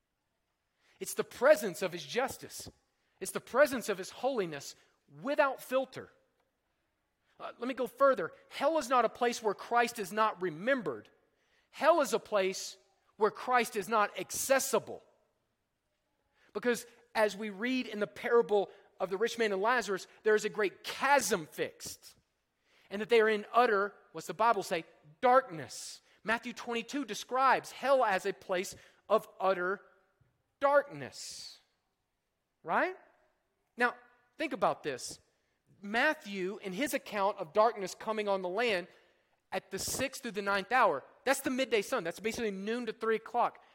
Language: English